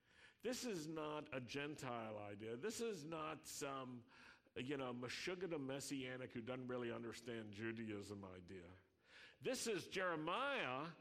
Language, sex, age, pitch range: English, male, 50-69, 115-155 Hz